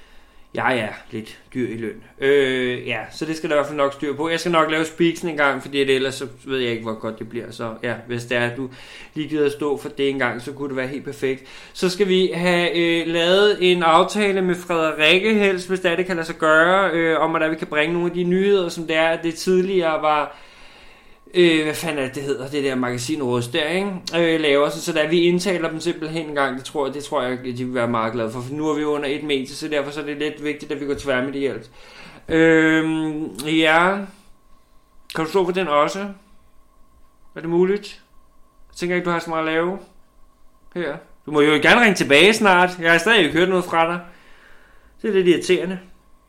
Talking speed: 245 wpm